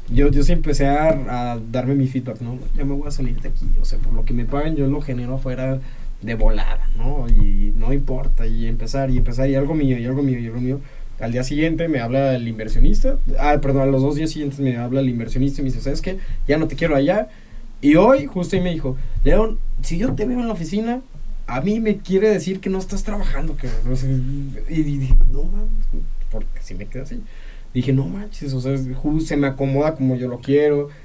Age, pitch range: 20-39, 120-150 Hz